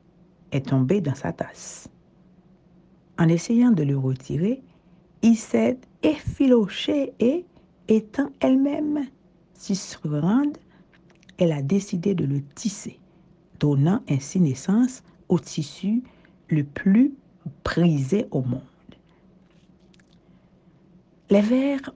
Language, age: French, 60-79